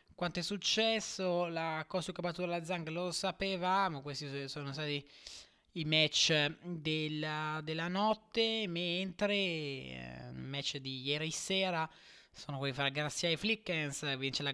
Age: 20-39